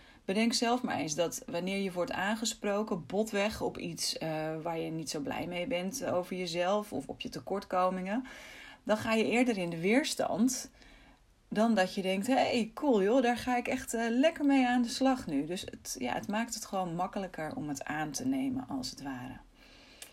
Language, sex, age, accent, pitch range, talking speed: Dutch, female, 30-49, Dutch, 165-230 Hz, 195 wpm